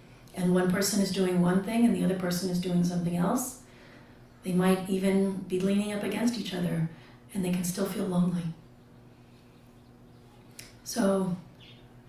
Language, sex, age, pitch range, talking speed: English, female, 40-59, 125-185 Hz, 155 wpm